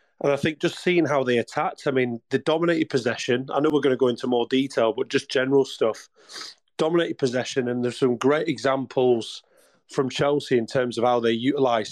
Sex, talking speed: male, 205 wpm